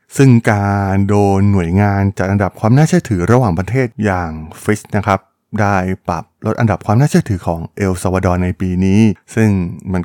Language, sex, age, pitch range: Thai, male, 20-39, 95-120 Hz